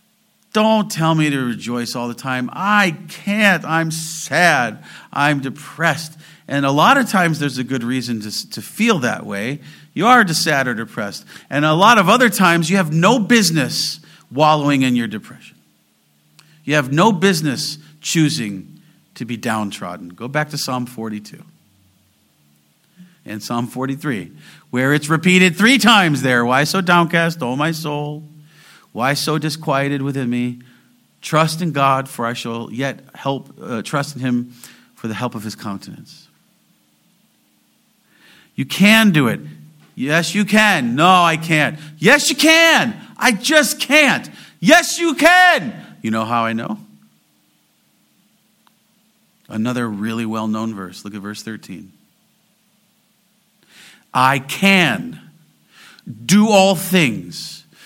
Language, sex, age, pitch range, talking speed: English, male, 50-69, 125-200 Hz, 140 wpm